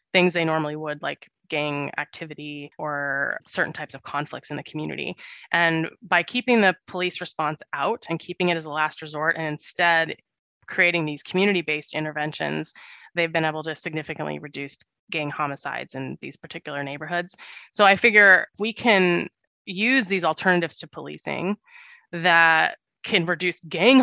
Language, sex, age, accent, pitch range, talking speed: English, female, 20-39, American, 155-185 Hz, 150 wpm